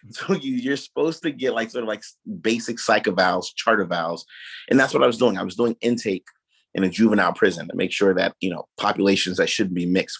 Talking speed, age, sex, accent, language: 235 wpm, 30-49, male, American, English